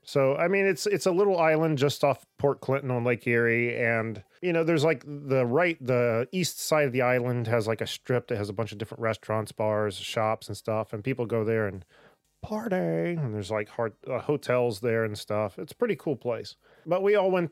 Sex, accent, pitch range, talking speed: male, American, 115-145 Hz, 230 wpm